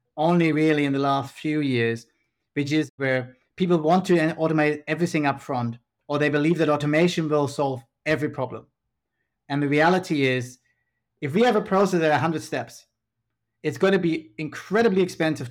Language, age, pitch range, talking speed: English, 30-49, 130-170 Hz, 165 wpm